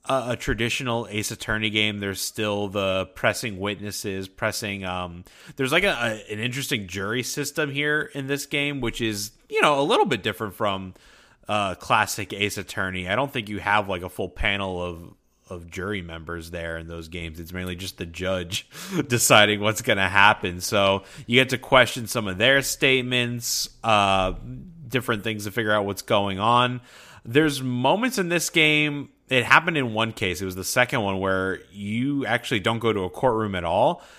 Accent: American